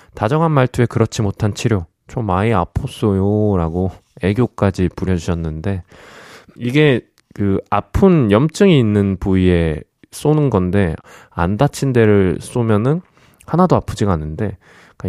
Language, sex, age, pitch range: Korean, male, 20-39, 90-125 Hz